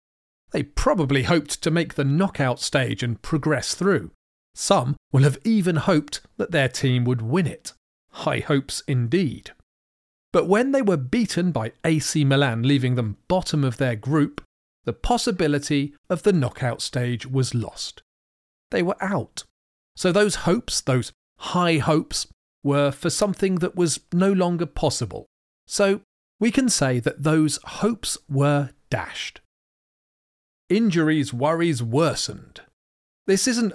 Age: 40-59